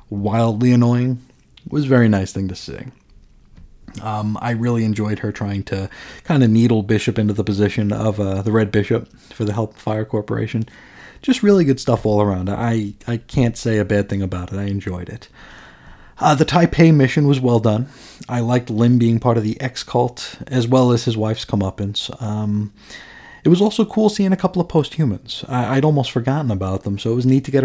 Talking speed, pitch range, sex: 205 wpm, 110-140 Hz, male